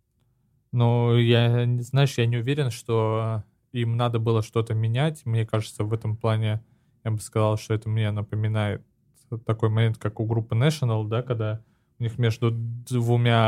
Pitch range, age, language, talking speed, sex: 115-130 Hz, 20-39, Russian, 160 wpm, male